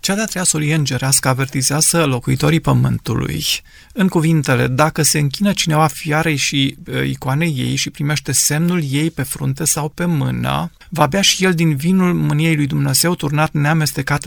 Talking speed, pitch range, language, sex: 160 wpm, 145-175 Hz, Romanian, male